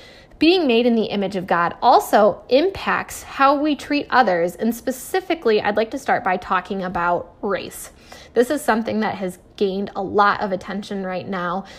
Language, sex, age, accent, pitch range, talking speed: English, female, 10-29, American, 195-250 Hz, 180 wpm